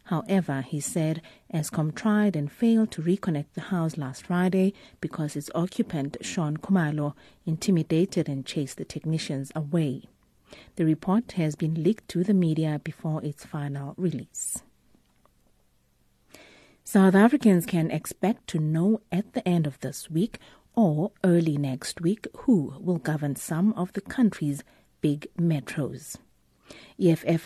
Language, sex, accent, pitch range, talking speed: English, female, South African, 150-185 Hz, 135 wpm